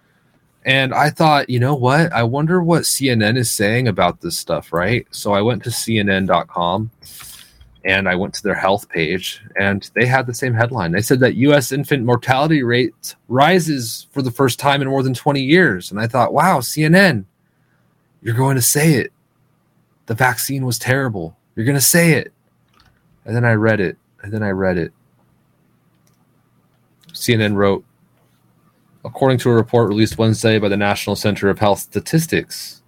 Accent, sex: American, male